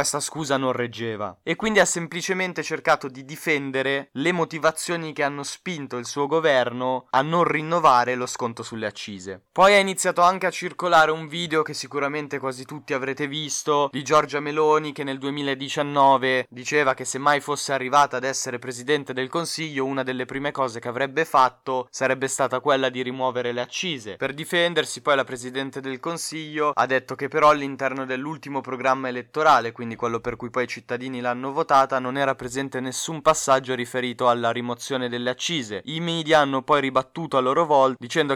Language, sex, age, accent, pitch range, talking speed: Italian, male, 20-39, native, 125-150 Hz, 180 wpm